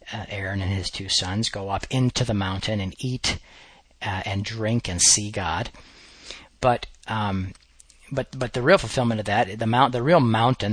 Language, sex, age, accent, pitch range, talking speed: English, male, 40-59, American, 100-130 Hz, 185 wpm